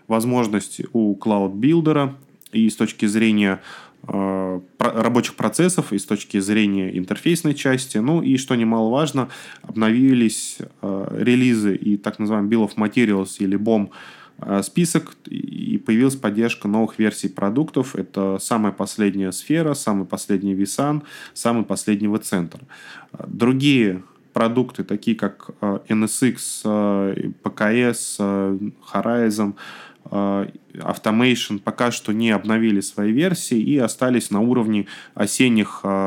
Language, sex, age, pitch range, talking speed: Russian, male, 20-39, 100-120 Hz, 120 wpm